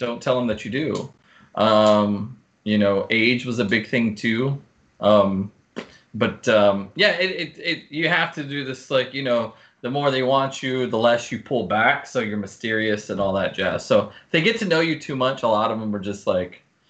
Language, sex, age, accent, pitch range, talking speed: English, male, 20-39, American, 105-135 Hz, 225 wpm